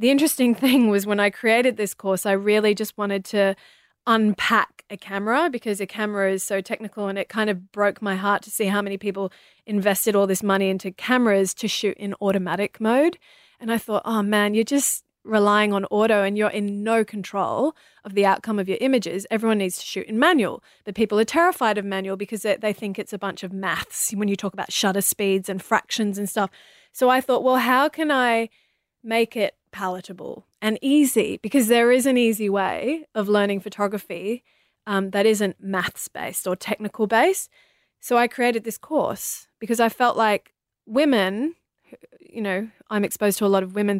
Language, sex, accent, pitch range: English, female, Australian, 200-255 Hz